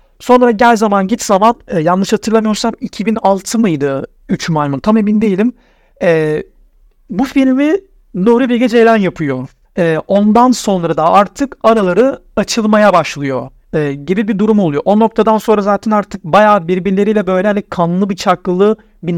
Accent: native